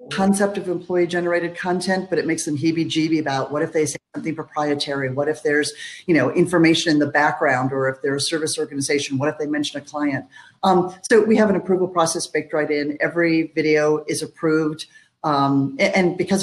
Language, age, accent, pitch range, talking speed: English, 50-69, American, 145-175 Hz, 200 wpm